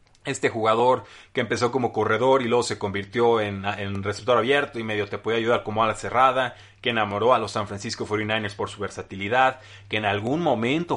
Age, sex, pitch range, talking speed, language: 30-49, male, 105-125 Hz, 195 wpm, Spanish